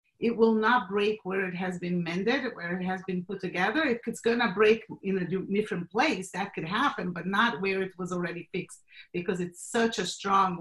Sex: female